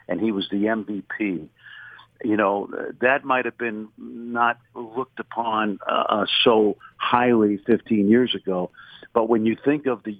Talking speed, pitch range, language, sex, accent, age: 155 wpm, 95-115 Hz, English, male, American, 50-69